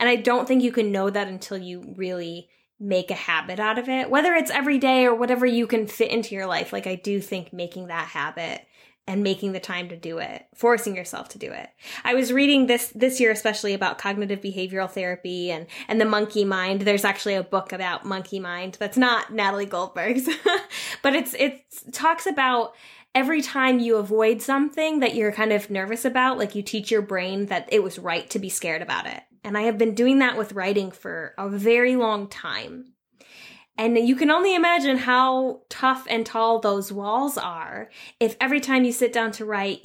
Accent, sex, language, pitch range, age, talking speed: American, female, English, 195-250 Hz, 10-29, 210 wpm